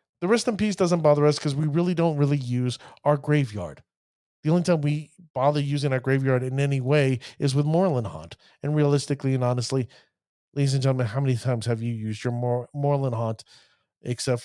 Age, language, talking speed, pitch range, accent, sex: 40-59, English, 195 wpm, 115-145 Hz, American, male